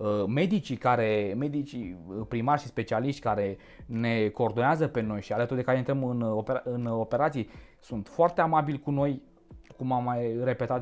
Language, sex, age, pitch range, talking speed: Romanian, male, 20-39, 115-145 Hz, 150 wpm